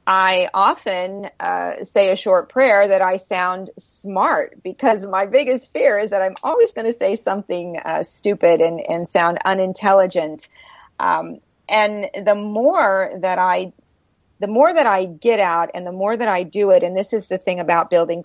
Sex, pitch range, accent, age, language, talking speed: female, 175-240 Hz, American, 40-59, English, 180 wpm